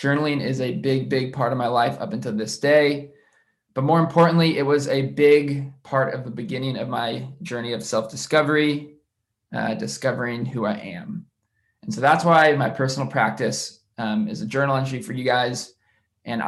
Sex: male